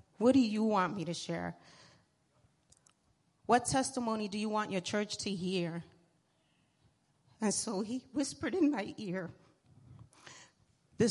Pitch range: 170-220 Hz